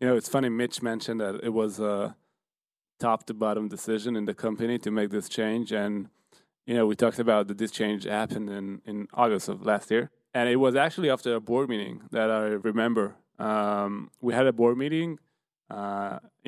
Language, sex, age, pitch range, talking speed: Hebrew, male, 20-39, 105-130 Hz, 205 wpm